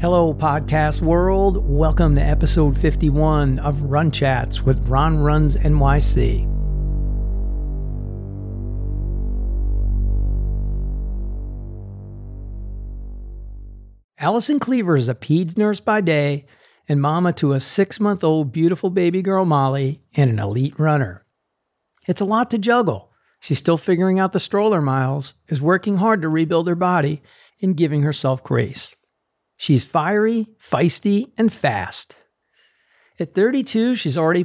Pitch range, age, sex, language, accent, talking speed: 130-175 Hz, 50-69, male, English, American, 115 wpm